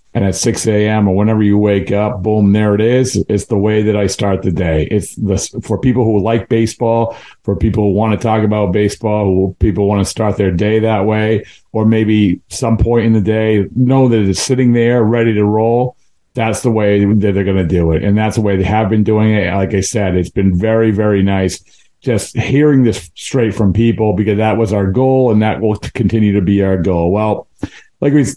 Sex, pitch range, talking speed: male, 100-115 Hz, 225 wpm